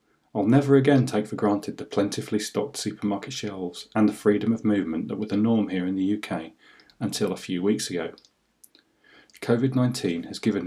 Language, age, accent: English, 30-49, British